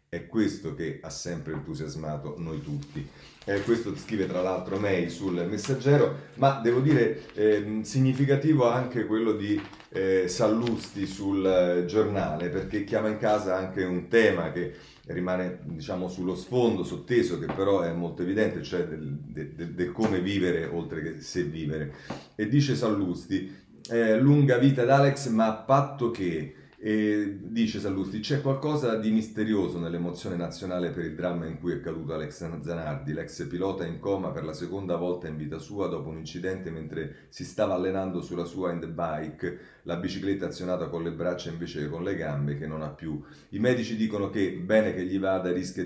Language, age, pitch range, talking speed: Italian, 40-59, 85-110 Hz, 175 wpm